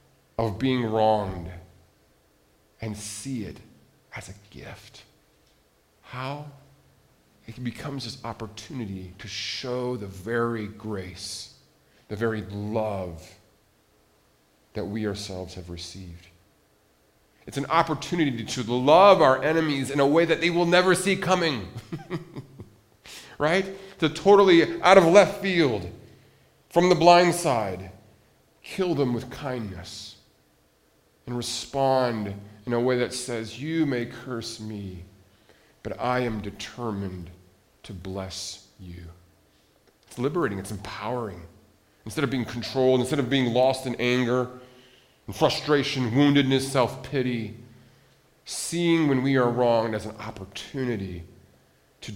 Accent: American